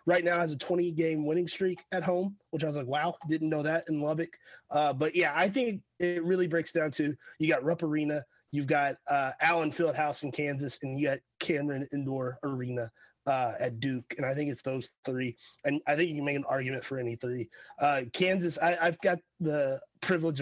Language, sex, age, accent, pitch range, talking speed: English, male, 30-49, American, 145-170 Hz, 210 wpm